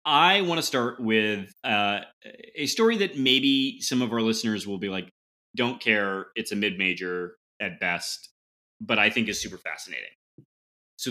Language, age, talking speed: English, 30-49, 165 wpm